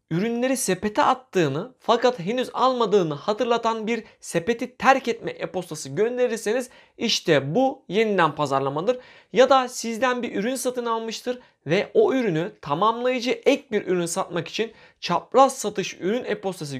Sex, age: male, 30-49